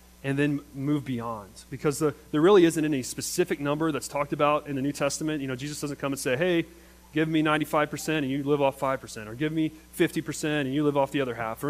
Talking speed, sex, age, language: 240 wpm, male, 30-49, English